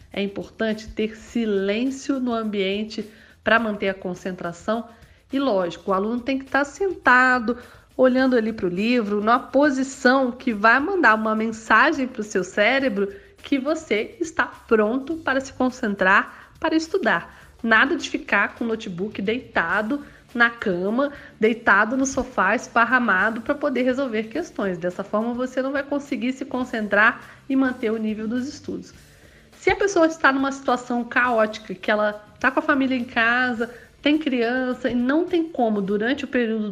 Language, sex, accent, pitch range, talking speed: Portuguese, female, Brazilian, 215-270 Hz, 160 wpm